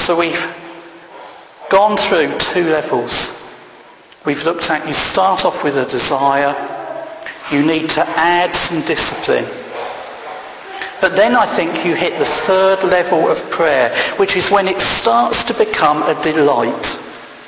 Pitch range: 165-240 Hz